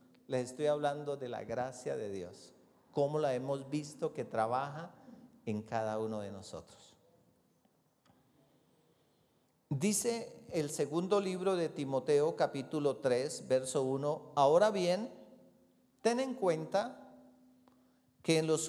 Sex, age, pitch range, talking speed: male, 40-59, 145-210 Hz, 120 wpm